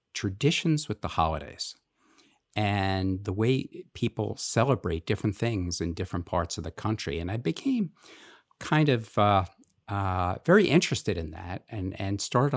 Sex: male